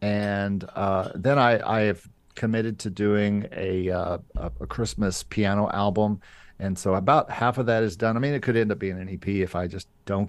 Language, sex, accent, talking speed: English, male, American, 210 wpm